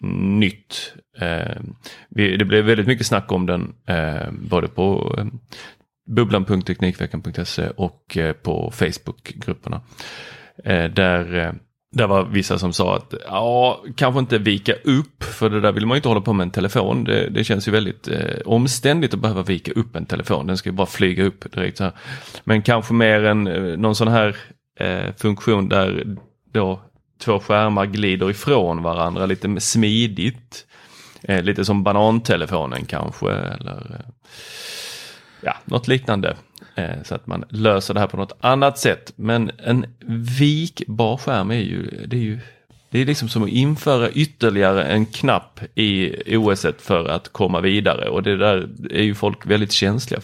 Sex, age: male, 30-49